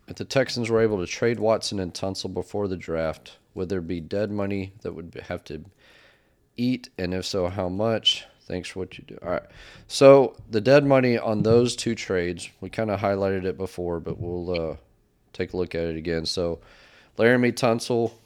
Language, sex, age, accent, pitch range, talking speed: English, male, 30-49, American, 85-105 Hz, 205 wpm